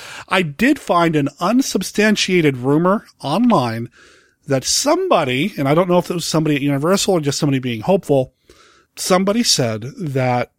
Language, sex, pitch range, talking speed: English, male, 140-185 Hz, 155 wpm